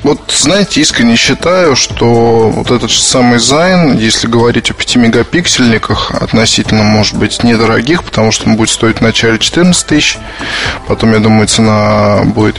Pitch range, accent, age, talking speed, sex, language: 110-125 Hz, native, 20-39, 155 wpm, male, Russian